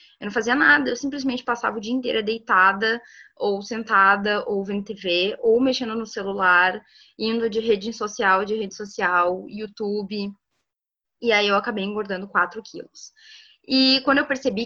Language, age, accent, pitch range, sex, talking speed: Portuguese, 10-29, Brazilian, 185-235 Hz, female, 160 wpm